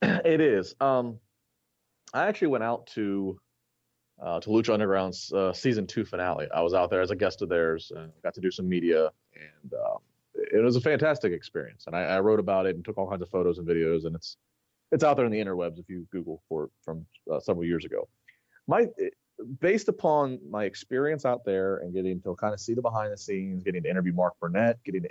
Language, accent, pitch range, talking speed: English, American, 90-125 Hz, 220 wpm